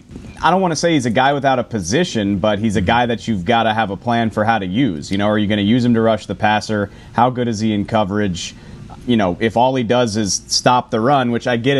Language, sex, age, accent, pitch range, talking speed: English, male, 30-49, American, 110-125 Hz, 290 wpm